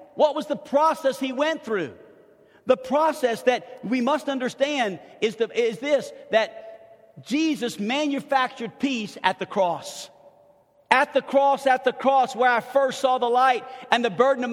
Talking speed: 160 wpm